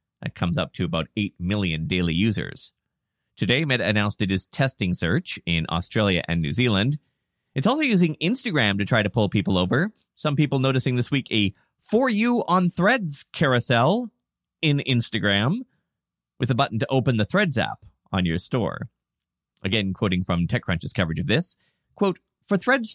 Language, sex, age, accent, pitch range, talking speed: English, male, 30-49, American, 100-155 Hz, 170 wpm